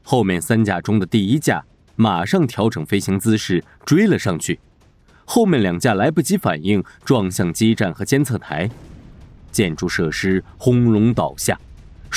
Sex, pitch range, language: male, 85-120 Hz, Chinese